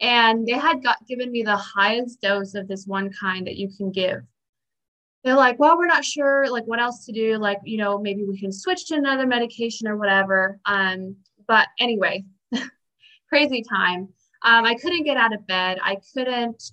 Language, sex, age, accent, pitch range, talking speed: English, female, 20-39, American, 195-245 Hz, 195 wpm